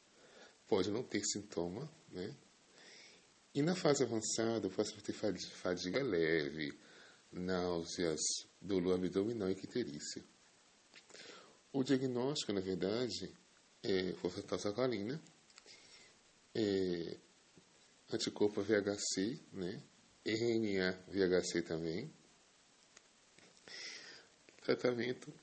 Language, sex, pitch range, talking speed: English, male, 95-115 Hz, 75 wpm